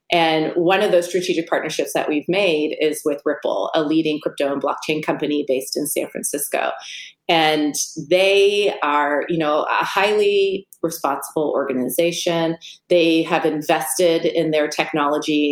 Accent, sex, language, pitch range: American, female, English, 155-185 Hz